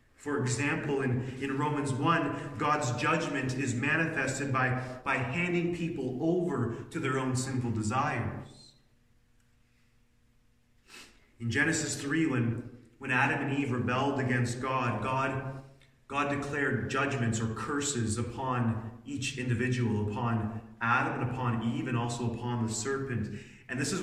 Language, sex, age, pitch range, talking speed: English, male, 30-49, 115-140 Hz, 130 wpm